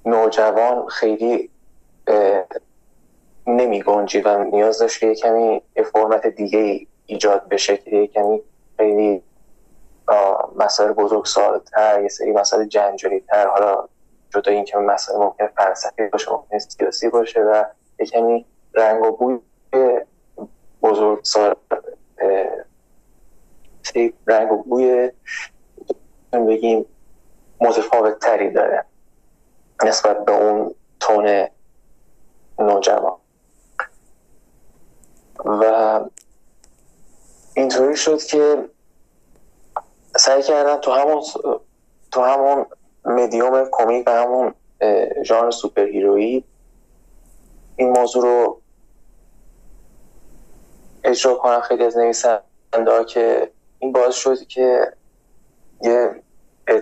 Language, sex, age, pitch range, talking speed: Persian, male, 20-39, 105-125 Hz, 90 wpm